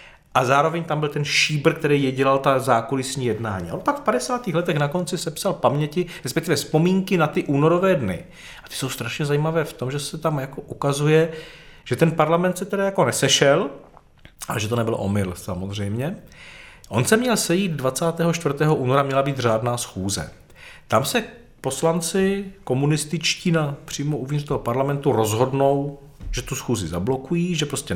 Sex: male